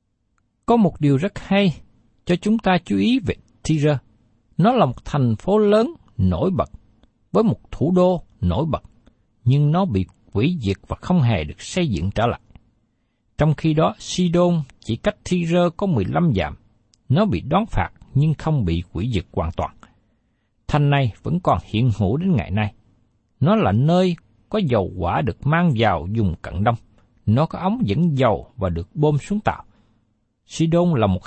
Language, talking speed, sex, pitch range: Vietnamese, 180 wpm, male, 105-160 Hz